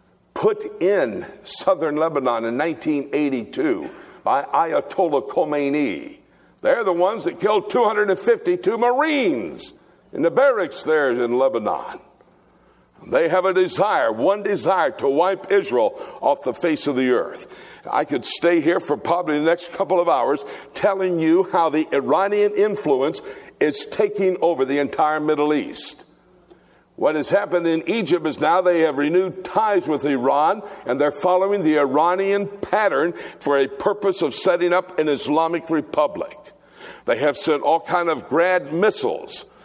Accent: American